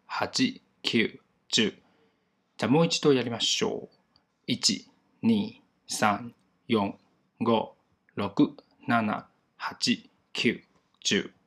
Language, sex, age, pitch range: Chinese, male, 20-39, 105-135 Hz